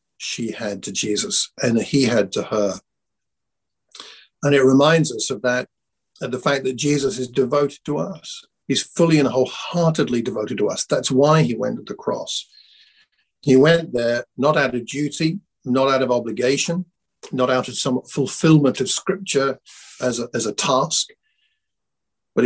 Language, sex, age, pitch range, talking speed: English, male, 50-69, 120-155 Hz, 165 wpm